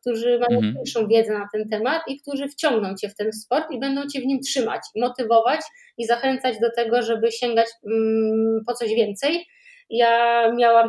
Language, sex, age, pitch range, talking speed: Polish, female, 20-39, 230-250 Hz, 175 wpm